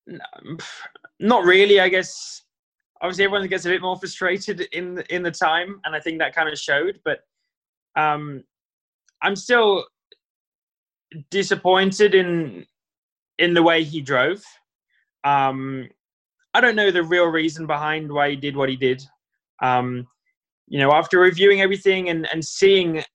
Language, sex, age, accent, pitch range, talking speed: English, male, 10-29, British, 140-180 Hz, 150 wpm